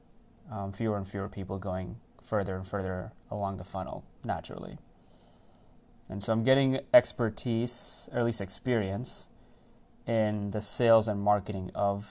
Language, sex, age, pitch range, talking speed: English, male, 20-39, 100-115 Hz, 140 wpm